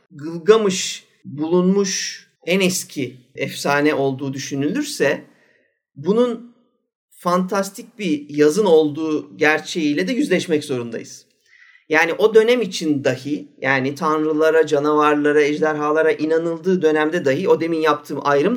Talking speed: 105 wpm